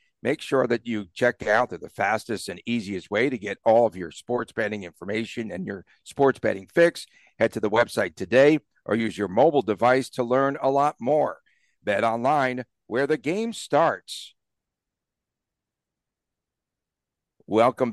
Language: English